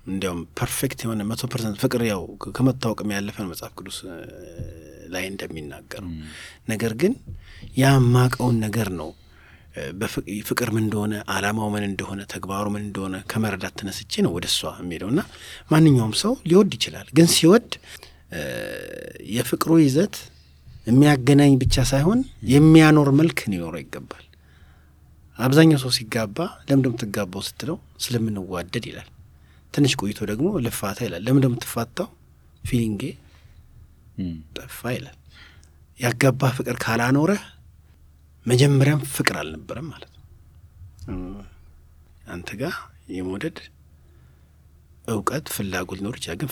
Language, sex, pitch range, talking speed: English, male, 80-125 Hz, 75 wpm